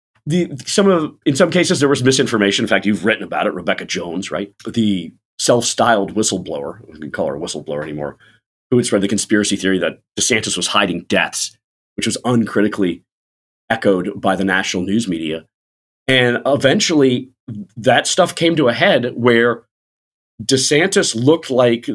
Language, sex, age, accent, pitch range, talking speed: English, male, 40-59, American, 100-130 Hz, 165 wpm